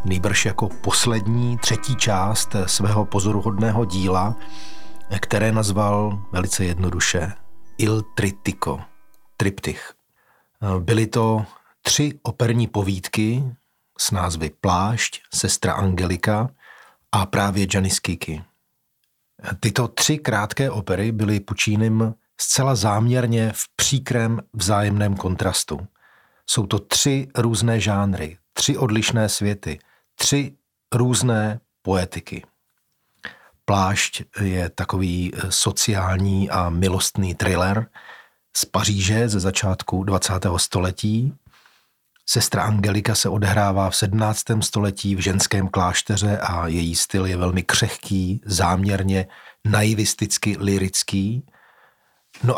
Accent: native